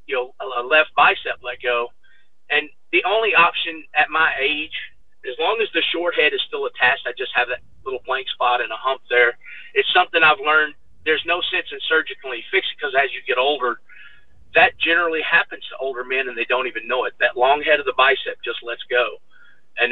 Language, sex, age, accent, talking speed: English, male, 40-59, American, 215 wpm